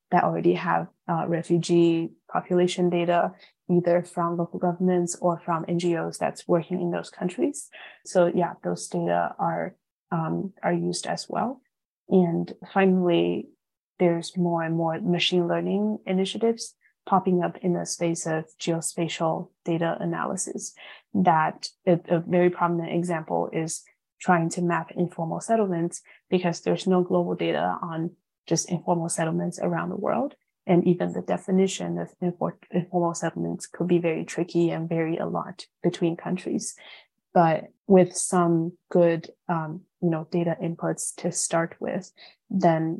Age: 20-39